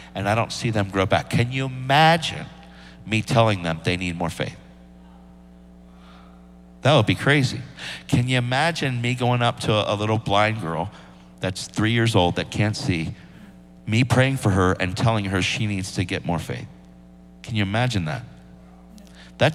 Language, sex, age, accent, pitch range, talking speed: English, male, 50-69, American, 85-120 Hz, 175 wpm